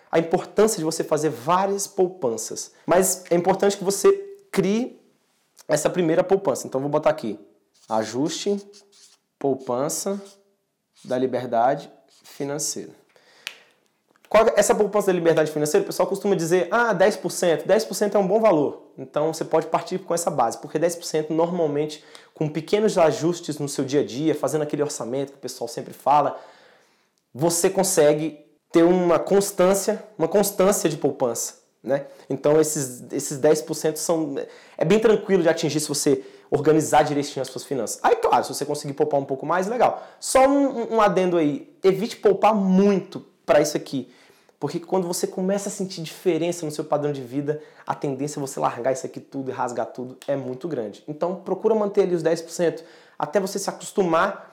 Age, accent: 20-39, Brazilian